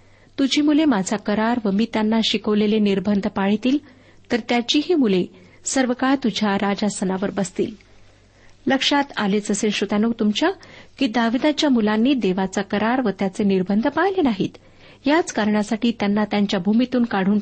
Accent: native